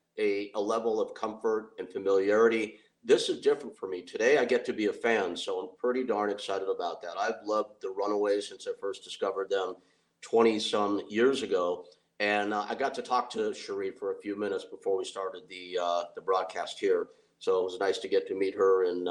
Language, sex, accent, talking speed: English, male, American, 215 wpm